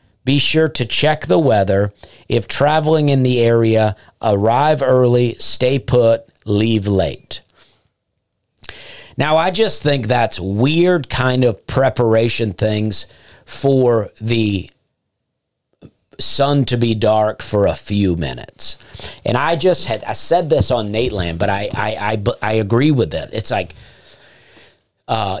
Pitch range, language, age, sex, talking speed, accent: 105-140 Hz, English, 40-59, male, 135 wpm, American